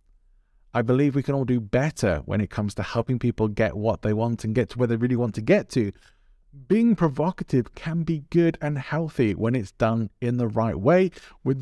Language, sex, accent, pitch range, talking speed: English, male, British, 105-150 Hz, 215 wpm